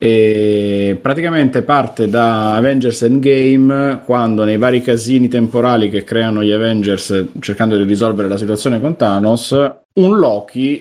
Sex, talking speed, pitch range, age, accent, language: male, 135 wpm, 95-120 Hz, 30-49, native, Italian